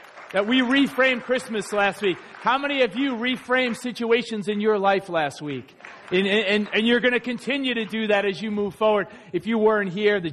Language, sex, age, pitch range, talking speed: English, male, 40-59, 165-210 Hz, 205 wpm